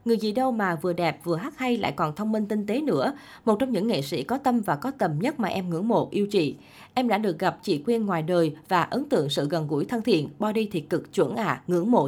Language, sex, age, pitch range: Vietnamese, female, 20-39, 170-230 Hz